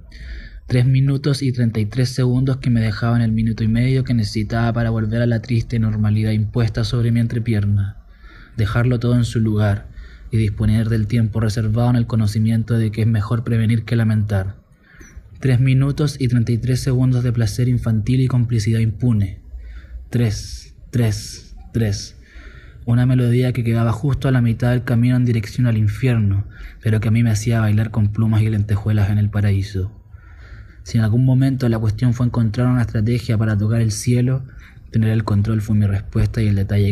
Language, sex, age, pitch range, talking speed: Spanish, male, 20-39, 105-120 Hz, 185 wpm